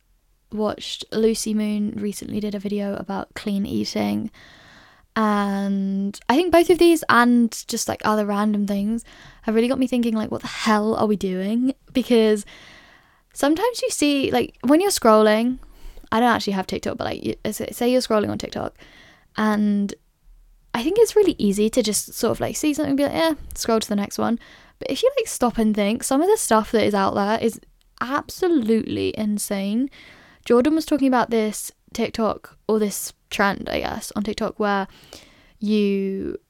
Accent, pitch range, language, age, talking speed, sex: British, 205-250 Hz, English, 10-29, 180 wpm, female